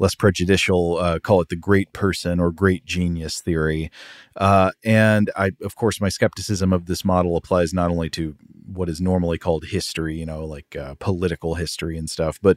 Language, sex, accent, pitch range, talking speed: English, male, American, 85-105 Hz, 190 wpm